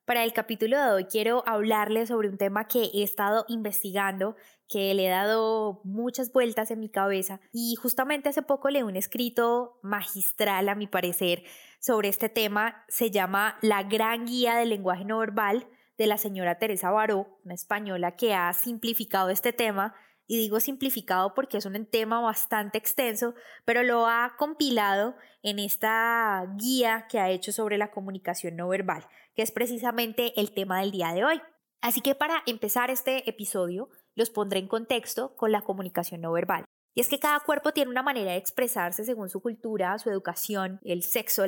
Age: 10-29